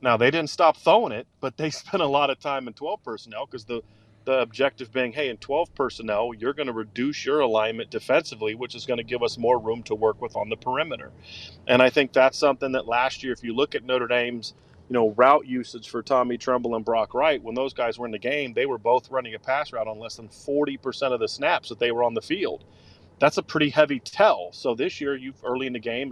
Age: 30-49